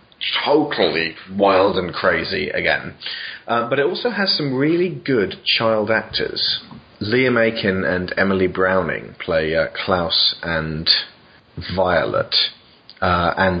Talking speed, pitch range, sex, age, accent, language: 120 wpm, 95-110 Hz, male, 30-49, British, English